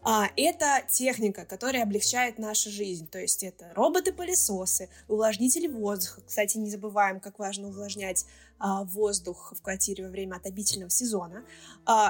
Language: Russian